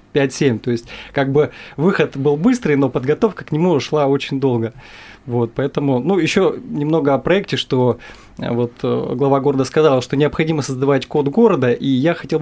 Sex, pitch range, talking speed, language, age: male, 125-155 Hz, 170 wpm, Russian, 20-39